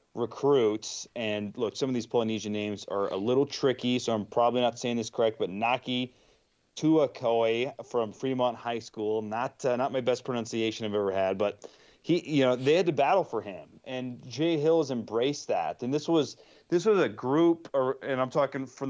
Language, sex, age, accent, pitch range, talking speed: English, male, 30-49, American, 115-145 Hz, 200 wpm